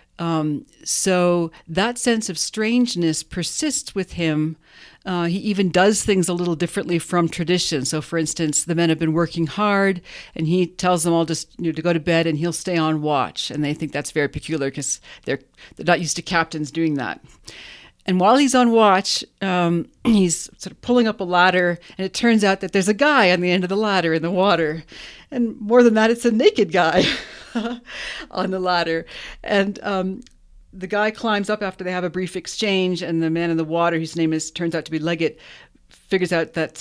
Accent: American